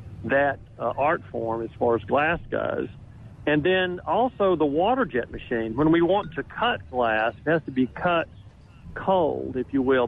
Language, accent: English, American